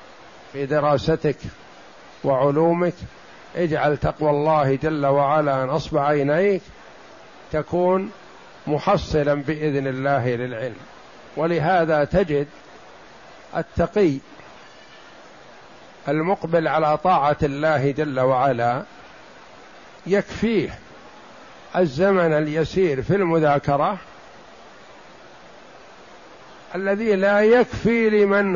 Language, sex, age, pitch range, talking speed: Arabic, male, 50-69, 150-185 Hz, 70 wpm